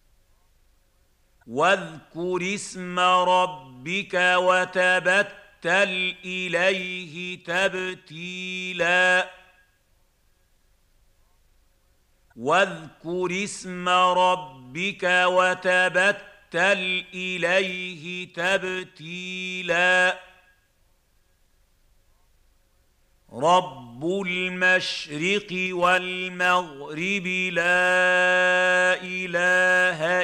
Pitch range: 135-185 Hz